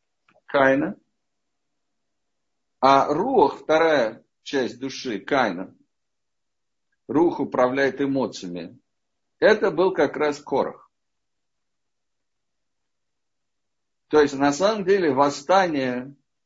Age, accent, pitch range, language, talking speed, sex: 50-69, native, 130-170 Hz, Russian, 75 wpm, male